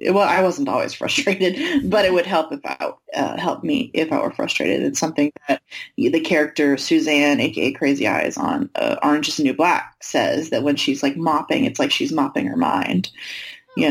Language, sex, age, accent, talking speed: English, female, 30-49, American, 200 wpm